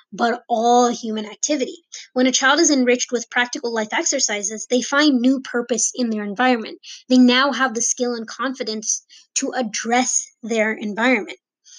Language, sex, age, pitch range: English, female, 20-39, 225-280 Hz